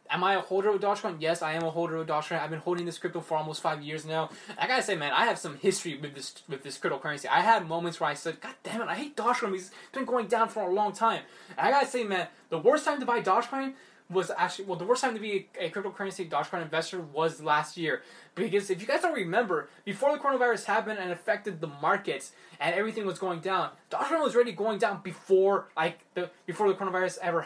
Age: 10-29